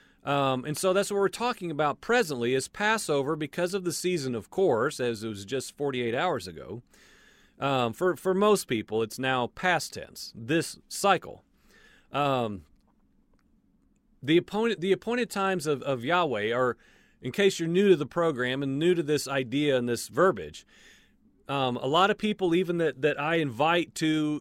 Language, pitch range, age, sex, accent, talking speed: English, 140-200 Hz, 40-59, male, American, 175 wpm